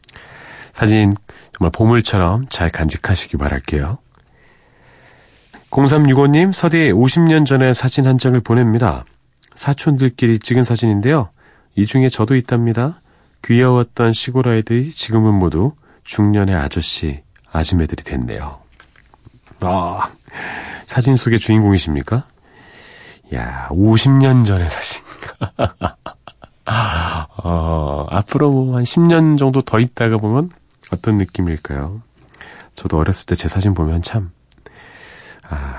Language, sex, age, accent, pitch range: Korean, male, 40-59, native, 90-135 Hz